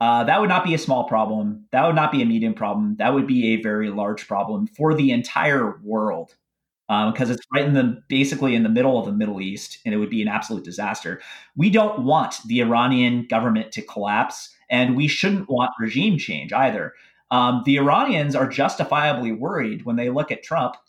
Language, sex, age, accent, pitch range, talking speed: English, male, 30-49, American, 125-195 Hz, 210 wpm